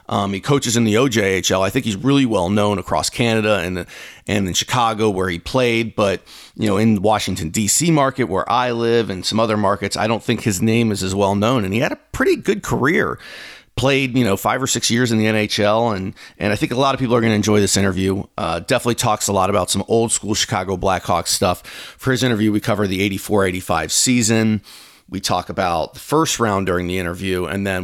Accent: American